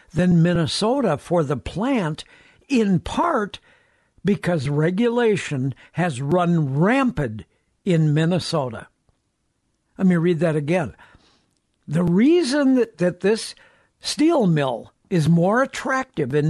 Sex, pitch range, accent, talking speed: male, 160-220 Hz, American, 110 wpm